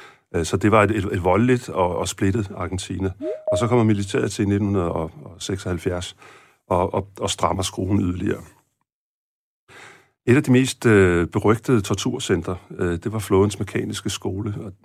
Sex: male